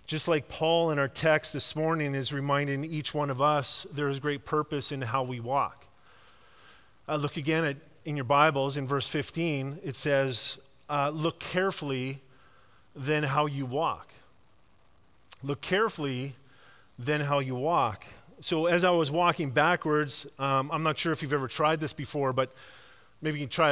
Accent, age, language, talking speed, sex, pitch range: American, 30-49, English, 170 wpm, male, 135-160 Hz